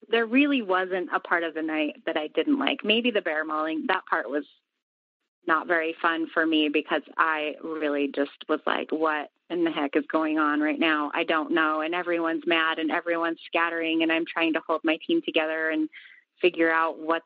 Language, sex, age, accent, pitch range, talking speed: English, female, 30-49, American, 165-250 Hz, 210 wpm